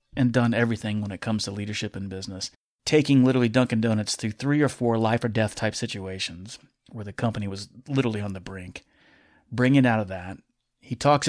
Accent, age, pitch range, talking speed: American, 30-49, 110-130 Hz, 185 wpm